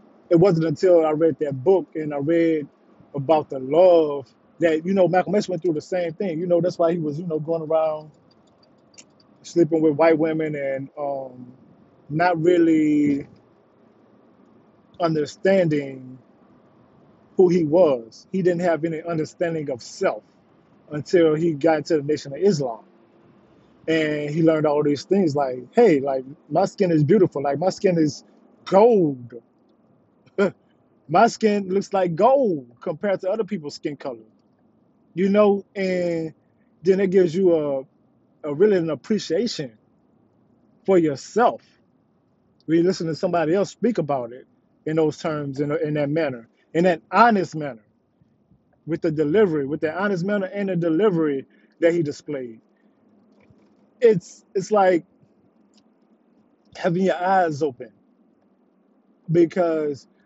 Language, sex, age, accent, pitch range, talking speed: English, male, 20-39, American, 150-190 Hz, 145 wpm